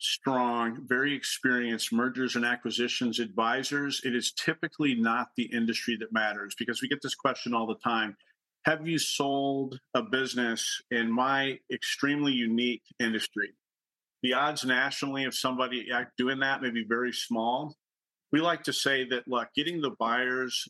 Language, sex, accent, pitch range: English, male, American, 120-140 Hz